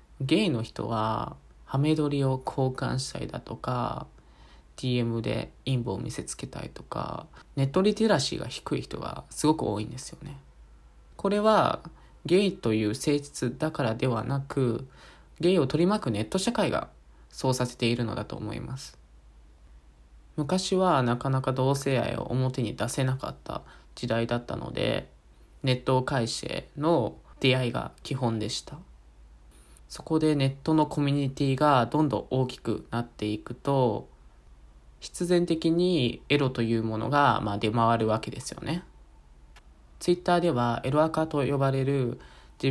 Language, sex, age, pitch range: Japanese, male, 20-39, 110-145 Hz